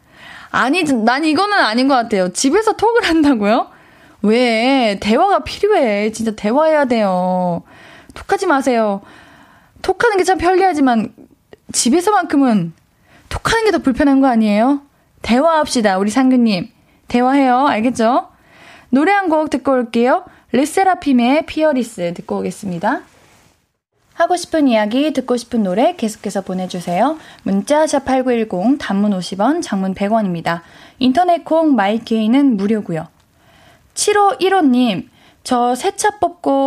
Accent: native